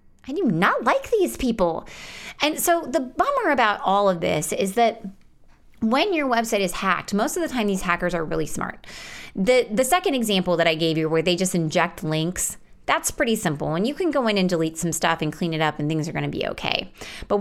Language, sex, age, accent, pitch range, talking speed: English, female, 30-49, American, 170-225 Hz, 230 wpm